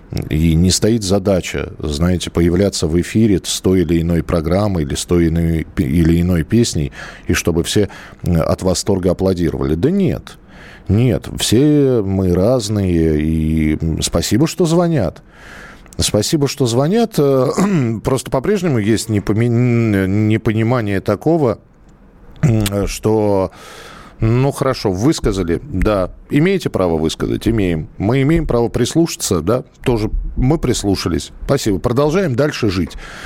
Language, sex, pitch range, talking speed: Russian, male, 90-140 Hz, 120 wpm